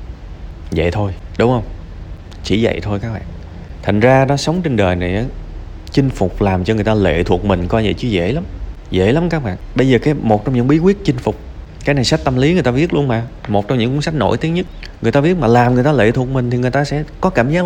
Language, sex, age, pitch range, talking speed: Vietnamese, male, 20-39, 90-130 Hz, 270 wpm